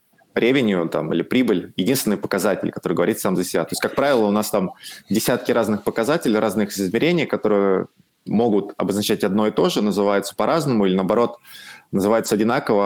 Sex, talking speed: male, 165 wpm